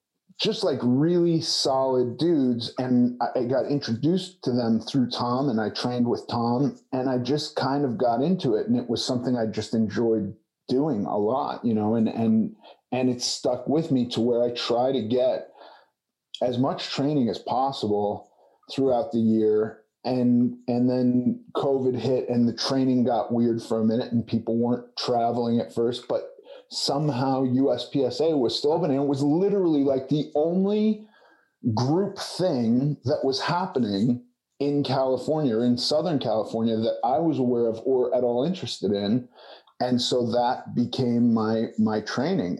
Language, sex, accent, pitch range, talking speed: English, male, American, 120-145 Hz, 165 wpm